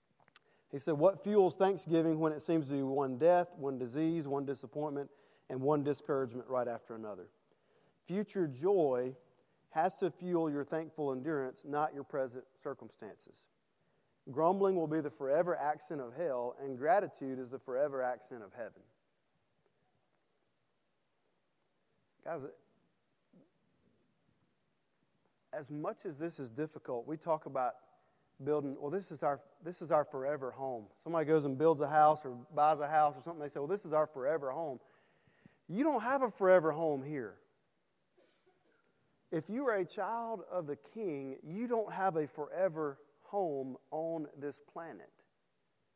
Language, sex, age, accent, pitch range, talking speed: English, male, 40-59, American, 140-190 Hz, 150 wpm